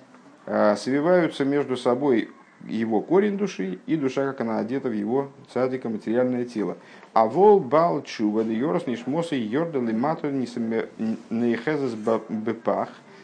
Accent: native